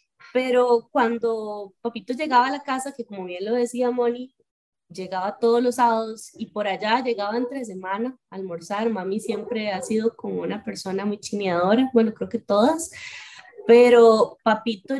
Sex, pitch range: female, 205-255 Hz